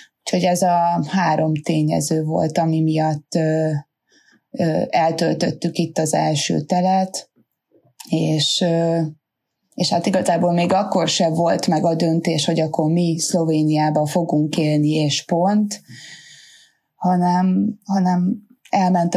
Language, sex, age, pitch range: Hungarian, female, 20-39, 155-185 Hz